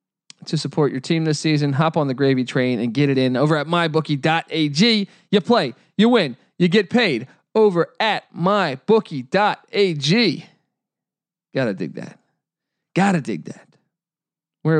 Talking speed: 140 wpm